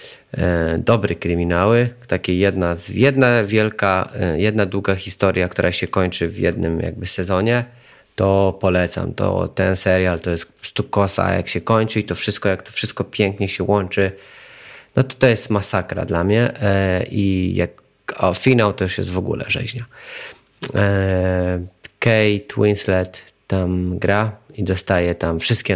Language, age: Polish, 30-49